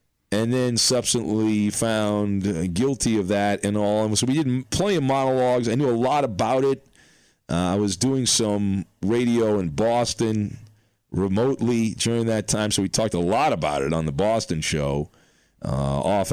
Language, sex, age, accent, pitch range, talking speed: English, male, 40-59, American, 100-125 Hz, 175 wpm